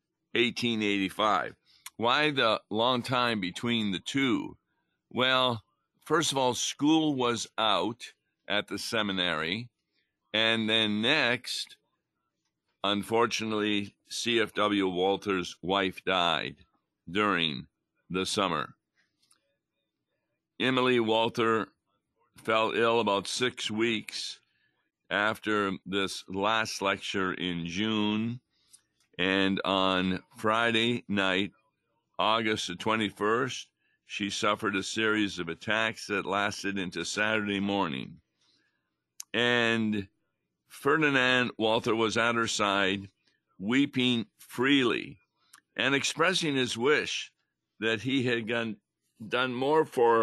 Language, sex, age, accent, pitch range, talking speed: English, male, 50-69, American, 100-125 Hz, 95 wpm